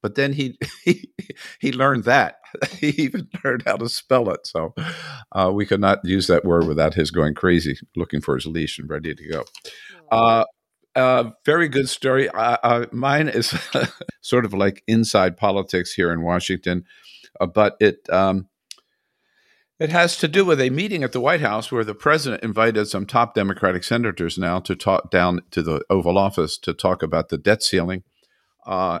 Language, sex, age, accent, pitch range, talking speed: English, male, 50-69, American, 85-120 Hz, 185 wpm